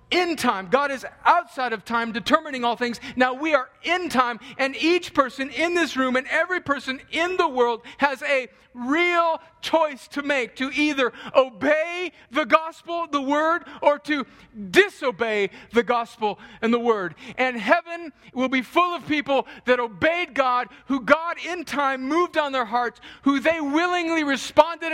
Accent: American